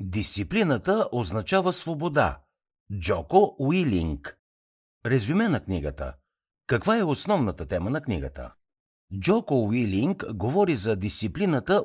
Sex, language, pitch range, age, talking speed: male, Bulgarian, 90-145 Hz, 60-79, 95 wpm